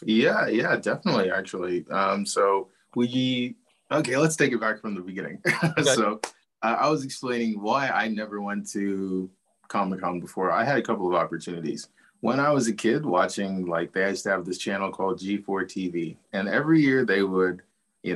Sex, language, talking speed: male, English, 185 wpm